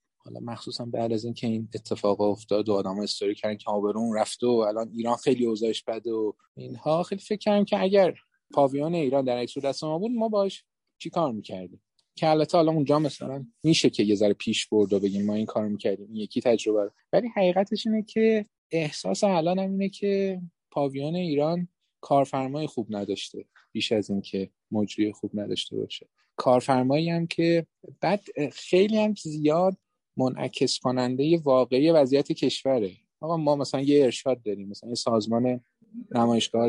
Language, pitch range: Persian, 110-155 Hz